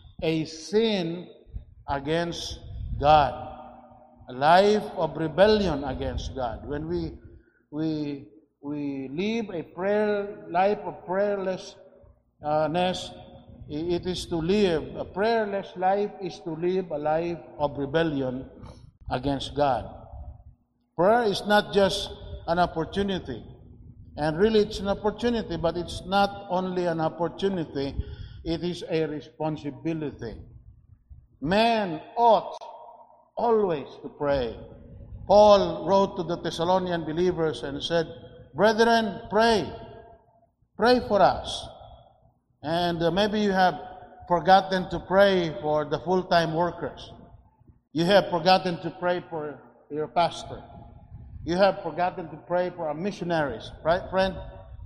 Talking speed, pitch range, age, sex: 115 wpm, 145-195 Hz, 50-69, male